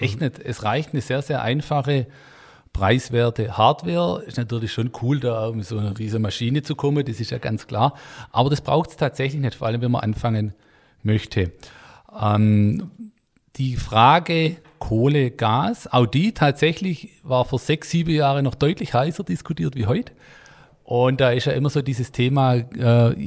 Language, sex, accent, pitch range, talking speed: German, male, German, 115-140 Hz, 170 wpm